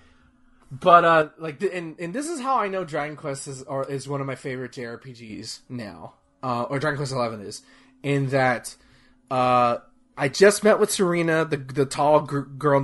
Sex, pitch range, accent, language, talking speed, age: male, 130-160 Hz, American, English, 195 wpm, 20-39